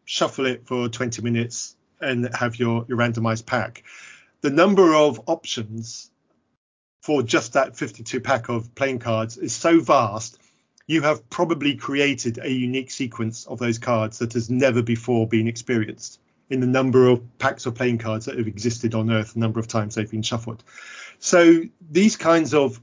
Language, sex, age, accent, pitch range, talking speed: English, male, 40-59, British, 115-150 Hz, 175 wpm